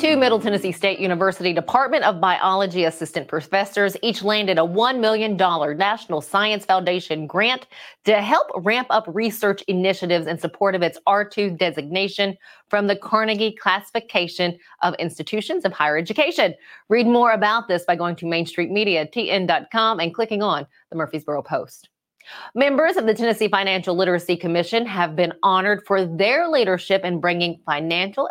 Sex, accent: female, American